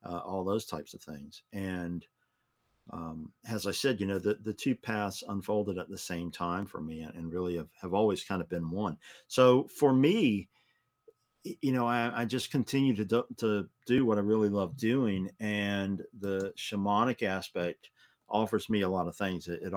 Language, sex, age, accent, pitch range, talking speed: English, male, 50-69, American, 90-105 Hz, 190 wpm